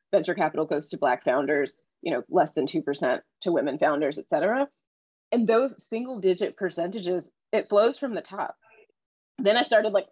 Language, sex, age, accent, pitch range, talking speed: English, female, 20-39, American, 180-220 Hz, 180 wpm